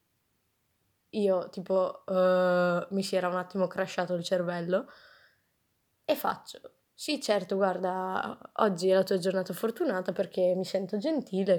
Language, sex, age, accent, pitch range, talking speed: Italian, female, 20-39, native, 175-200 Hz, 135 wpm